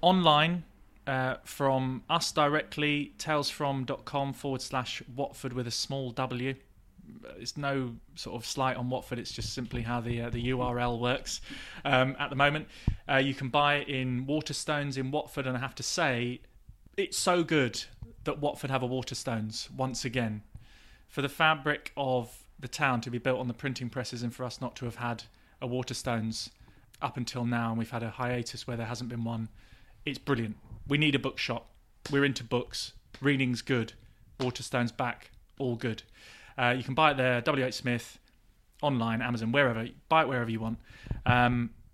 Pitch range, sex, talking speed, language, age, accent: 115-140 Hz, male, 175 wpm, English, 20-39, British